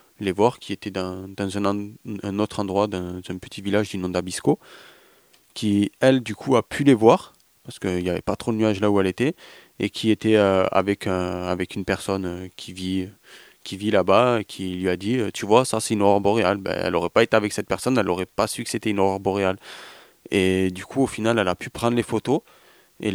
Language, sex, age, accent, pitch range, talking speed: French, male, 20-39, French, 95-110 Hz, 240 wpm